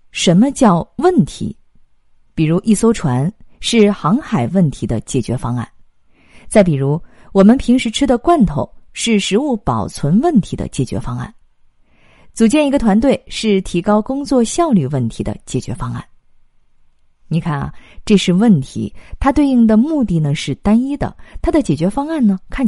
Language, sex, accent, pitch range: Chinese, female, native, 155-245 Hz